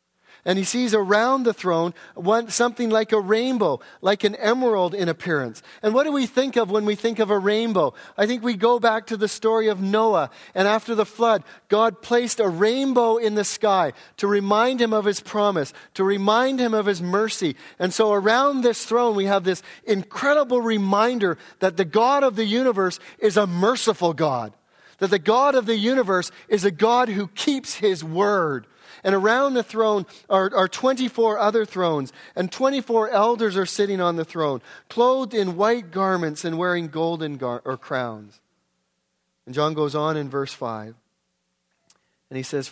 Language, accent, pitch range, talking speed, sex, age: English, American, 145-220 Hz, 180 wpm, male, 40-59